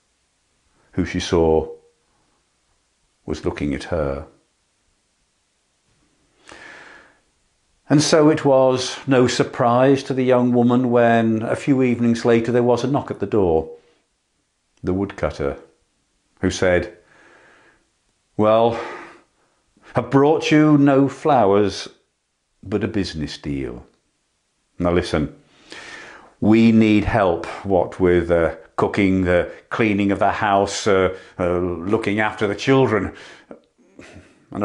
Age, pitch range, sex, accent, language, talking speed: 50-69, 90-120 Hz, male, British, English, 110 wpm